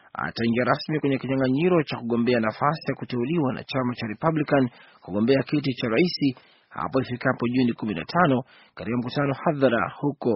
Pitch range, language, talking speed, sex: 125-150 Hz, Swahili, 140 wpm, male